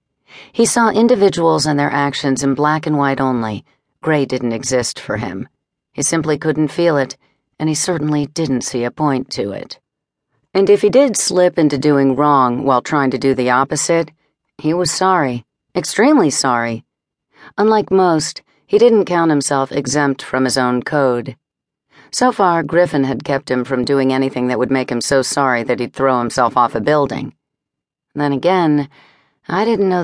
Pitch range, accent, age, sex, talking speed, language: 130-165 Hz, American, 40-59, female, 175 wpm, English